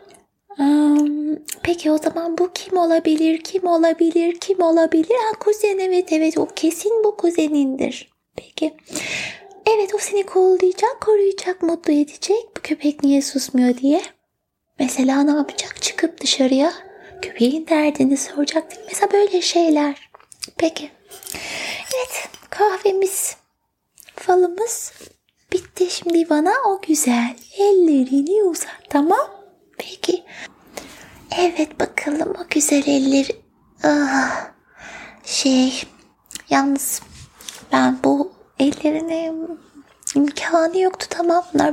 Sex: female